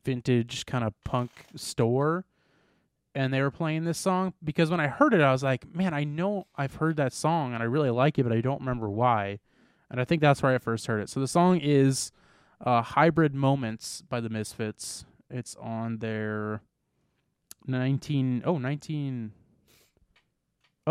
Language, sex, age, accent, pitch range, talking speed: English, male, 20-39, American, 110-140 Hz, 175 wpm